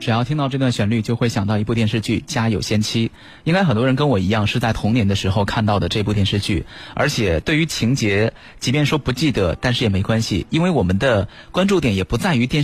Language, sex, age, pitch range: Chinese, male, 30-49, 100-125 Hz